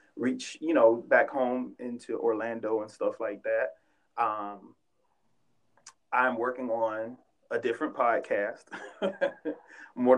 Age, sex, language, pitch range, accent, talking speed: 30-49, male, English, 105-120 Hz, American, 110 wpm